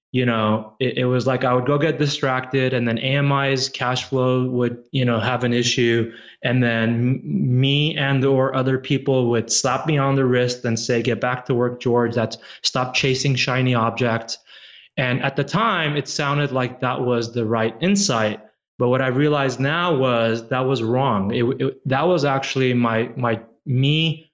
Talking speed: 190 wpm